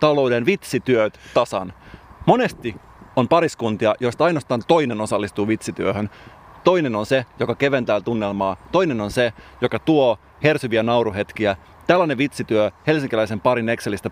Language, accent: Finnish, native